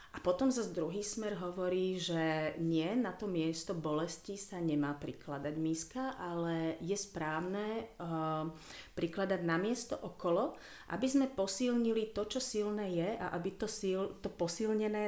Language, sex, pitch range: Slovak, female, 155-190 Hz